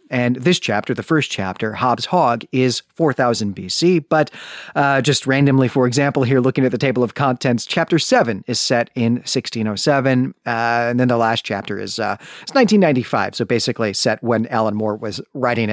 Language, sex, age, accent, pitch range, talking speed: English, male, 40-59, American, 115-155 Hz, 185 wpm